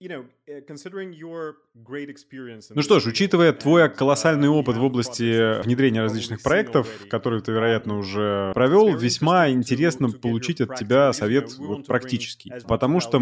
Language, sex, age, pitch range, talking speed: Russian, male, 20-39, 110-140 Hz, 125 wpm